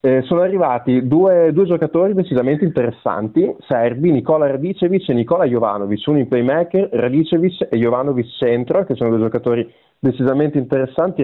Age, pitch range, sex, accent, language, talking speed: 30-49, 120-145 Hz, male, native, Italian, 145 wpm